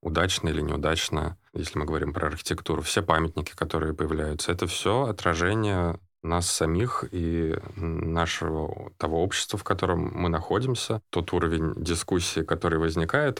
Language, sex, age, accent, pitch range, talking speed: Russian, male, 20-39, native, 80-95 Hz, 135 wpm